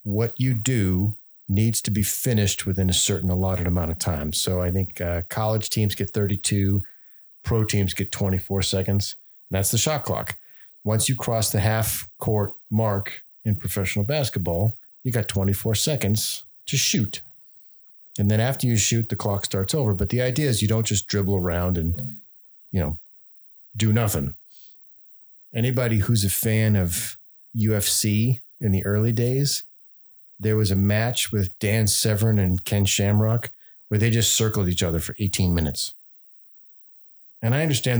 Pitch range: 95-120 Hz